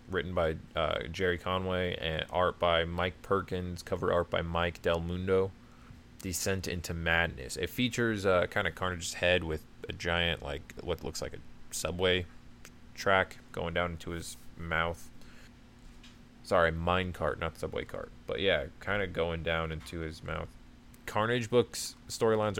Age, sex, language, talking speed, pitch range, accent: 20-39, male, English, 155 wpm, 85-105 Hz, American